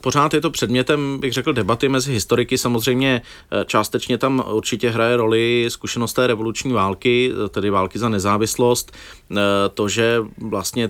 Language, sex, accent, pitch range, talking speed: Czech, male, native, 100-110 Hz, 145 wpm